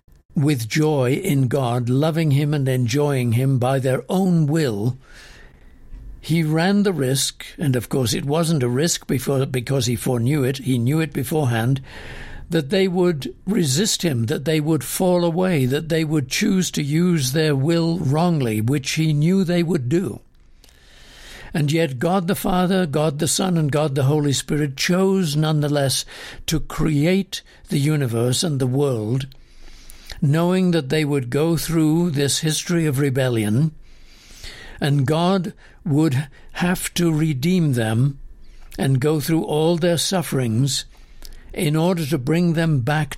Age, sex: 60-79, male